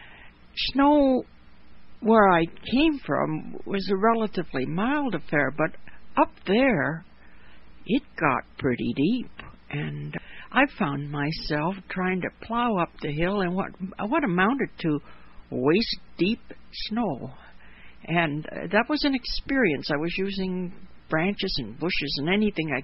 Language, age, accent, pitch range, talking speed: English, 60-79, American, 140-210 Hz, 130 wpm